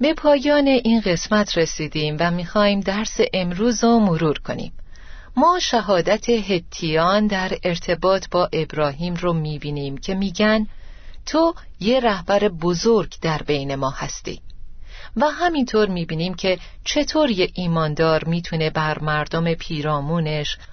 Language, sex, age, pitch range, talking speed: Persian, female, 40-59, 165-225 Hz, 120 wpm